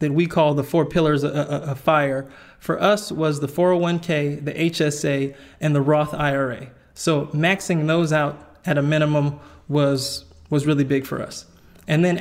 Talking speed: 165 wpm